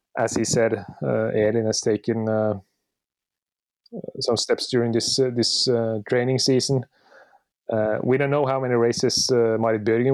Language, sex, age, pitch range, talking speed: English, male, 30-49, 105-125 Hz, 160 wpm